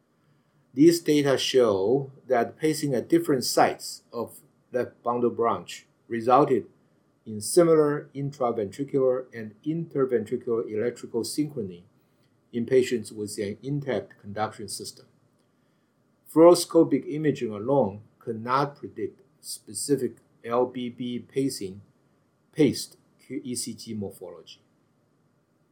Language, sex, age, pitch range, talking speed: English, male, 50-69, 110-140 Hz, 90 wpm